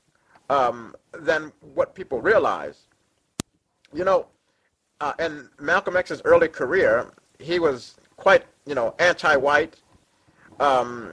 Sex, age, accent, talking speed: male, 50-69, American, 110 wpm